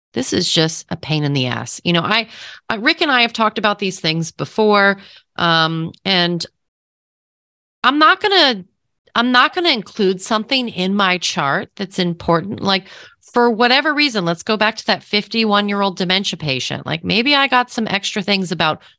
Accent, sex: American, female